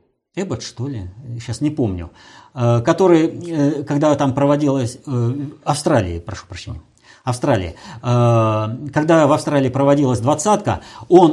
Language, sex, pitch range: Russian, male, 115-165 Hz